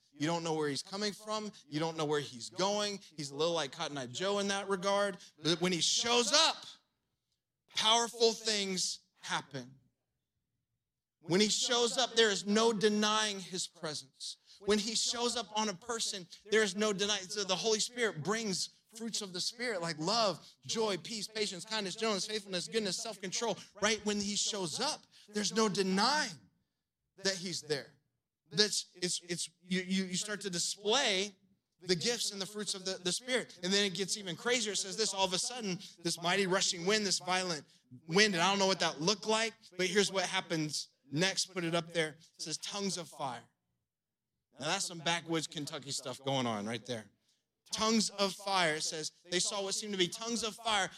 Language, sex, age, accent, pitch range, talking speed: English, male, 30-49, American, 165-210 Hz, 195 wpm